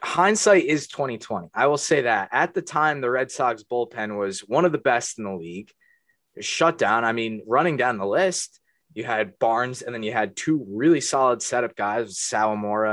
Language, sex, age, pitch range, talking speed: English, male, 20-39, 110-135 Hz, 205 wpm